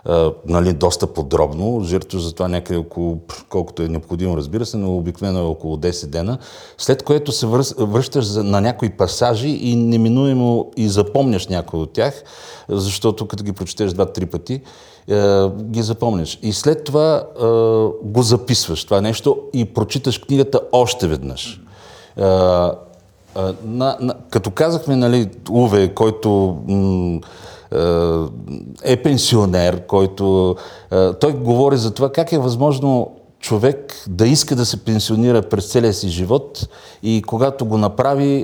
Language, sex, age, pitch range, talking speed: Bulgarian, male, 50-69, 95-125 Hz, 135 wpm